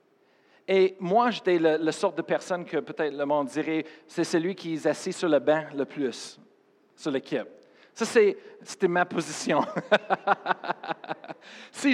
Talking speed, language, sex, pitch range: 155 wpm, French, male, 155-195 Hz